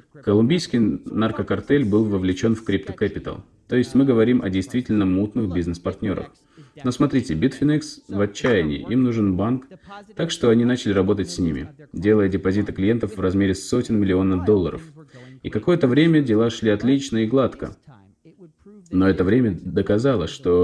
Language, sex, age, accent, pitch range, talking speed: Russian, male, 30-49, native, 95-130 Hz, 145 wpm